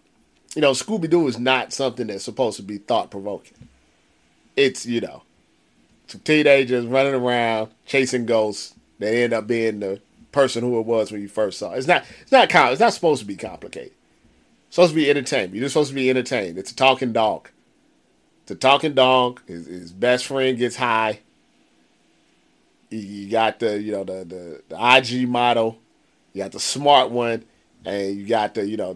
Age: 30-49